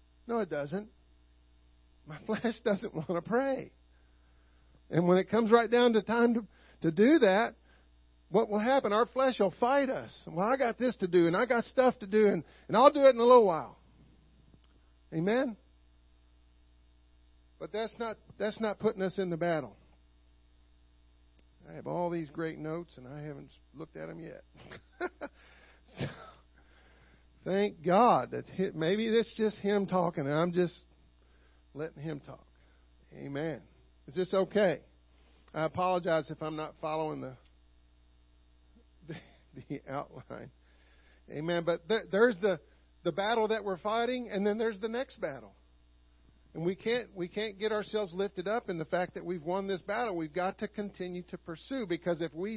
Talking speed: 165 wpm